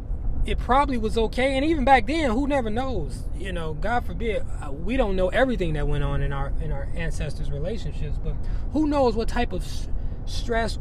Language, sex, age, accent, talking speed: English, male, 20-39, American, 195 wpm